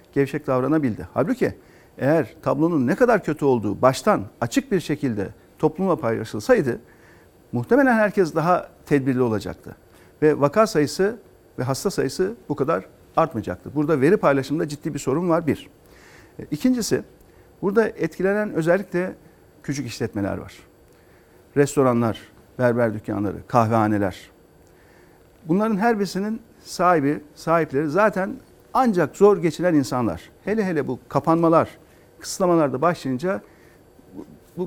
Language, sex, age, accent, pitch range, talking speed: Turkish, male, 50-69, native, 120-180 Hz, 115 wpm